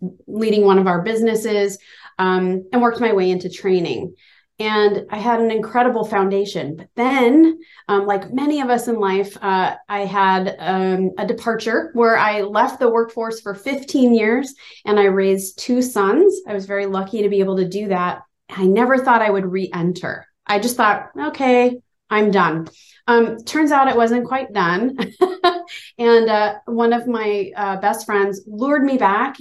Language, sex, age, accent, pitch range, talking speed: English, female, 30-49, American, 190-230 Hz, 175 wpm